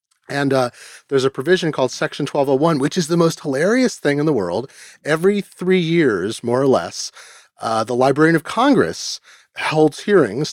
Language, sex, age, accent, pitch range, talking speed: English, male, 30-49, American, 125-155 Hz, 170 wpm